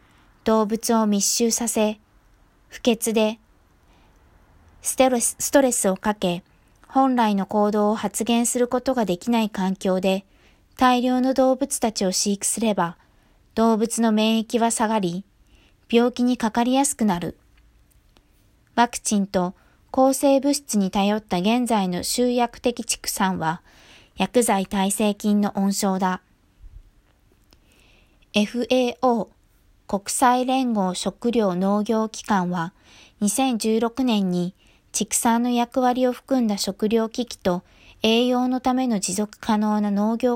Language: Japanese